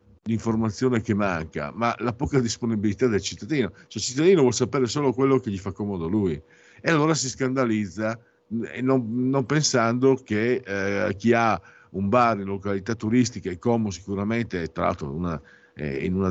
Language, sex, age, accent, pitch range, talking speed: Italian, male, 50-69, native, 100-130 Hz, 170 wpm